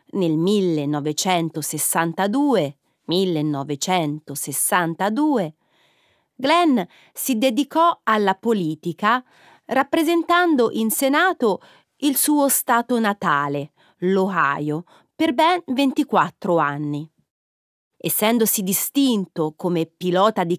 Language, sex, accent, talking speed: Italian, female, native, 75 wpm